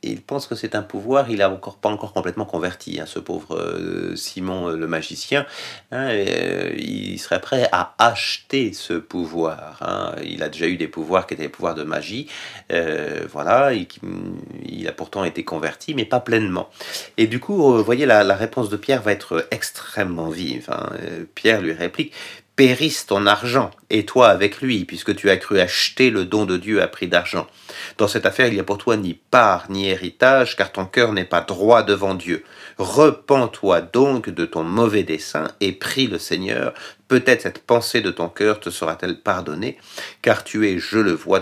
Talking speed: 200 wpm